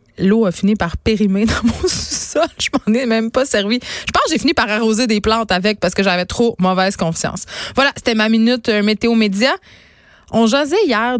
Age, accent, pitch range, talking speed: 20-39, Canadian, 190-240 Hz, 215 wpm